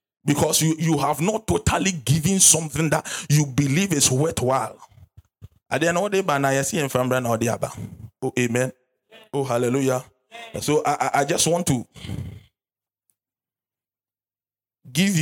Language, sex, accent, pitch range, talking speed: English, male, Nigerian, 110-135 Hz, 95 wpm